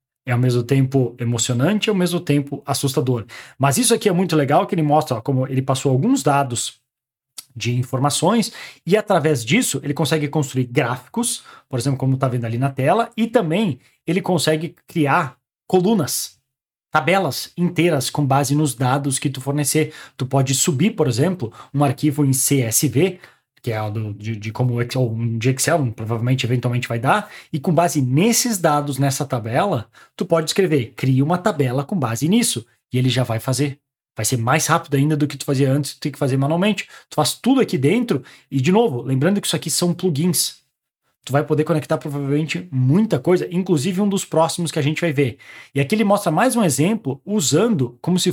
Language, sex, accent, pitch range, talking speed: Portuguese, male, Brazilian, 130-175 Hz, 190 wpm